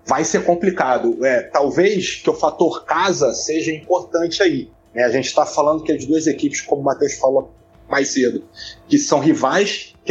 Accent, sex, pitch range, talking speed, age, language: Brazilian, male, 140-195 Hz, 185 wpm, 30-49, English